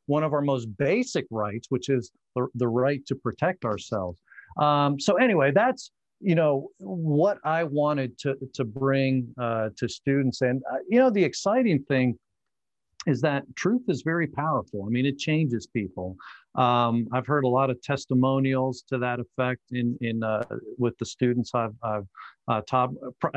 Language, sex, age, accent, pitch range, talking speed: English, male, 50-69, American, 125-155 Hz, 170 wpm